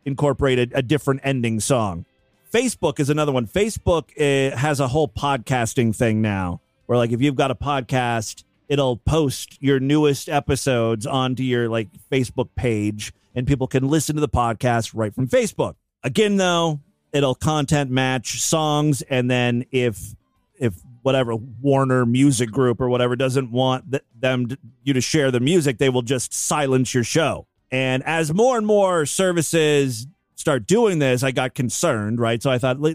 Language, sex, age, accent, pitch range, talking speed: English, male, 30-49, American, 120-150 Hz, 165 wpm